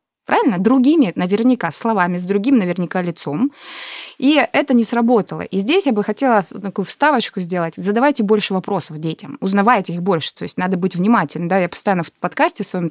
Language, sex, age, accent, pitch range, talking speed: Russian, female, 20-39, native, 180-250 Hz, 180 wpm